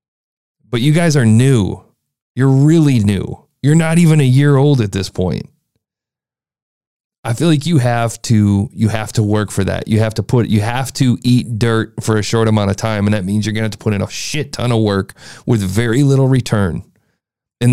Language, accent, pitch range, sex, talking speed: English, American, 110-150 Hz, male, 215 wpm